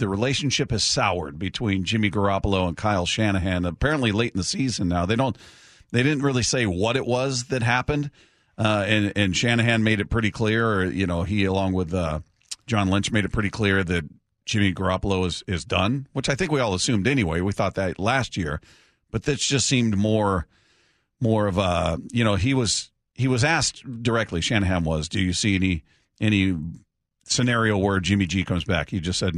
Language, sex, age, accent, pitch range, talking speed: English, male, 40-59, American, 95-115 Hz, 200 wpm